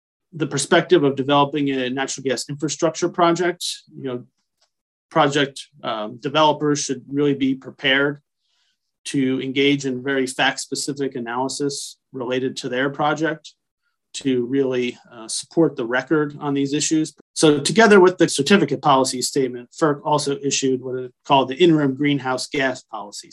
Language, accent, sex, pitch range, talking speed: English, American, male, 130-150 Hz, 145 wpm